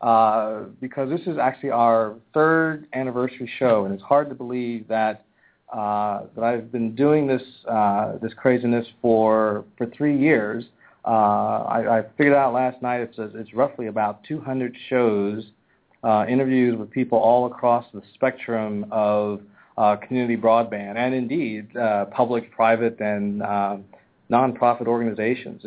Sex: male